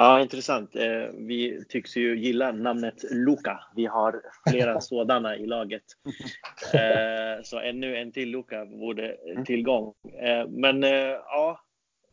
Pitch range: 110-130 Hz